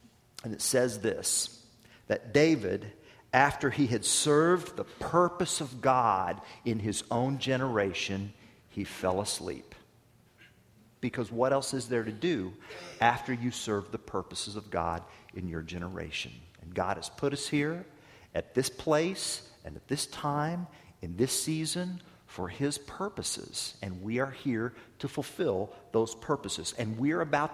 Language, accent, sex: English, American, male